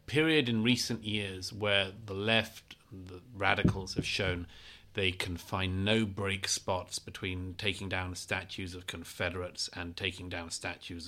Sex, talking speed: male, 145 wpm